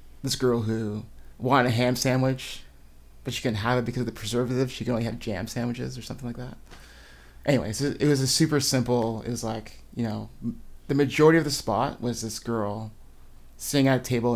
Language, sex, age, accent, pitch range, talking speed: English, male, 30-49, American, 100-130 Hz, 205 wpm